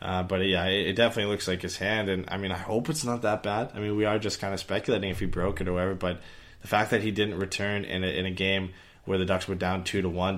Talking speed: 300 wpm